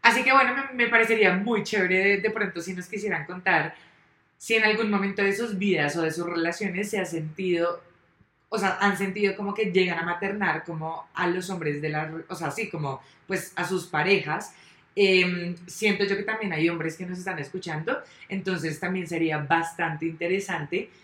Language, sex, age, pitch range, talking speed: Spanish, female, 20-39, 160-195 Hz, 195 wpm